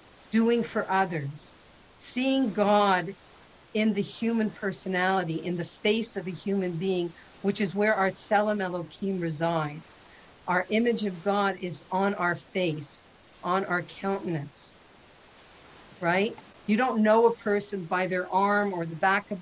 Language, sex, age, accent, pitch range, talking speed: English, female, 50-69, American, 180-210 Hz, 145 wpm